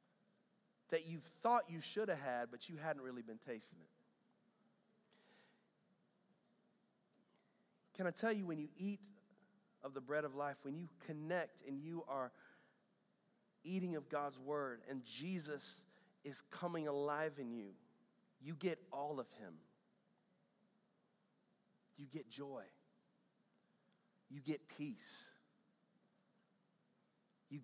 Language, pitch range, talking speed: English, 145-215 Hz, 120 wpm